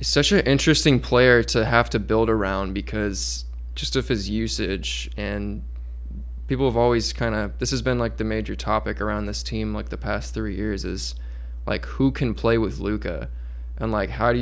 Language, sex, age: English, male, 20-39